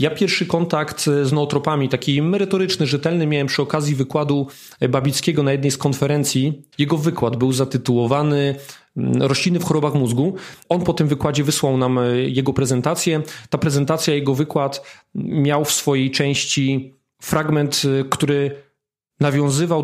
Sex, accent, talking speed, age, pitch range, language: male, native, 135 wpm, 40-59, 135-160 Hz, Polish